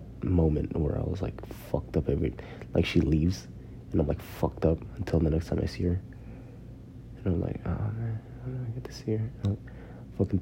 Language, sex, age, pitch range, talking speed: English, male, 20-39, 90-120 Hz, 215 wpm